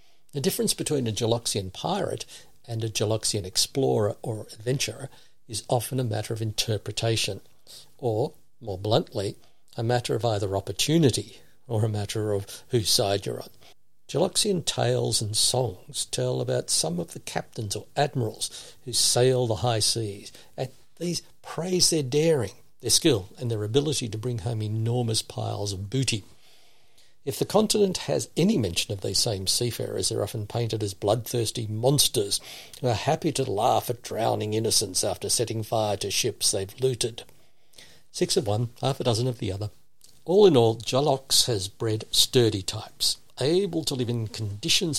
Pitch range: 110-130 Hz